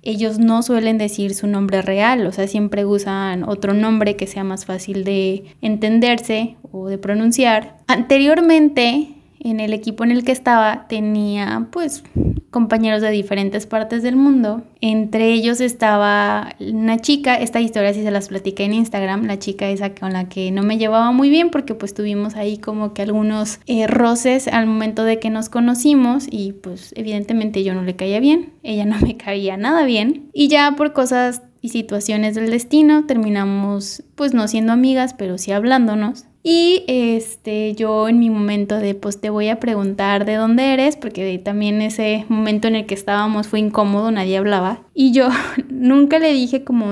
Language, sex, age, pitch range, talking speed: English, female, 20-39, 205-240 Hz, 180 wpm